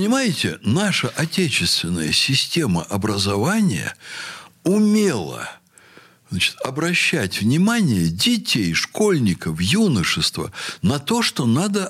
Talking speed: 80 wpm